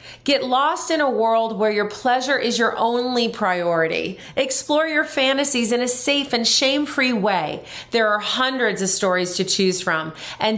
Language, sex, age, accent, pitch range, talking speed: English, female, 30-49, American, 180-245 Hz, 170 wpm